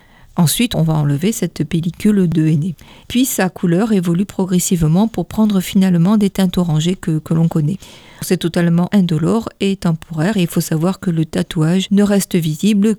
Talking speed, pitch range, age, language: 175 wpm, 170-210 Hz, 50-69, French